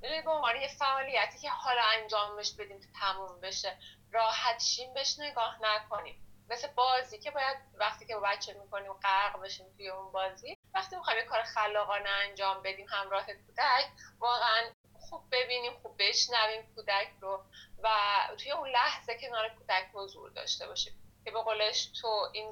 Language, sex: Persian, female